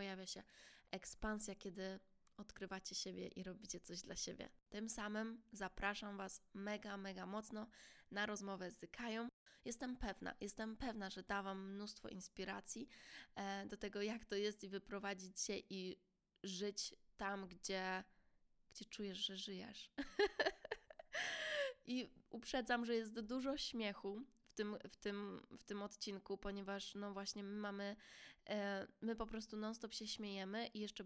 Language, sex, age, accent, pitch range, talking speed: Polish, female, 20-39, native, 195-220 Hz, 140 wpm